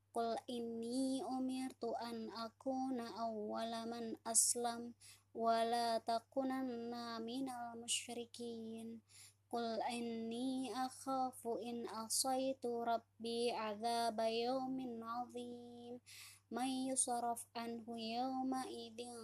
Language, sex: Indonesian, male